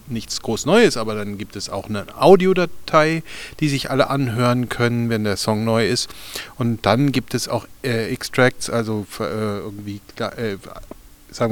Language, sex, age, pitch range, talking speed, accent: German, male, 40-59, 110-145 Hz, 175 wpm, German